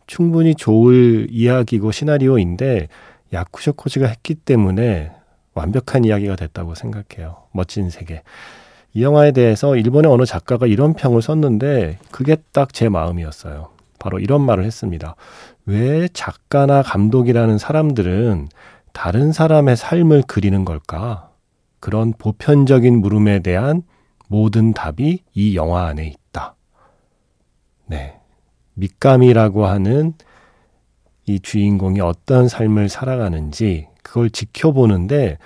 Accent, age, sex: native, 40-59, male